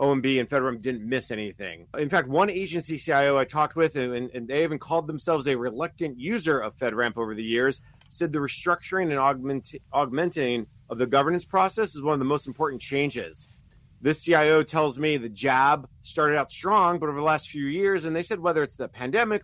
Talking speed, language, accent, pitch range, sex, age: 205 wpm, English, American, 130-165 Hz, male, 30-49